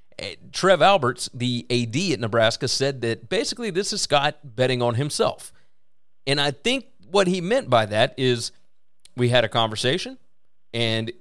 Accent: American